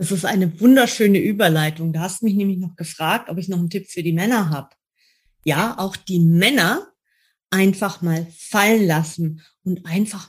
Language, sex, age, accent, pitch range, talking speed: German, female, 30-49, German, 165-200 Hz, 180 wpm